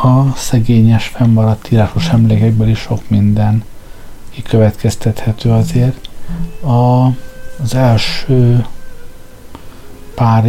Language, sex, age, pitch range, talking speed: Hungarian, male, 50-69, 100-115 Hz, 80 wpm